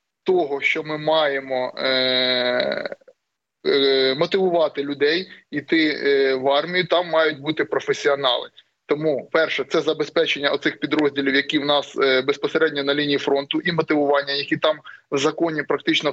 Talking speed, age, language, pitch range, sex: 135 wpm, 20-39, Ukrainian, 135-160 Hz, male